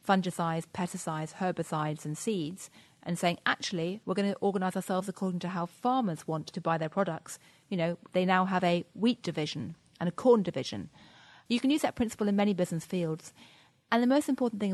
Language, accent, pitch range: English, British, 165-205 Hz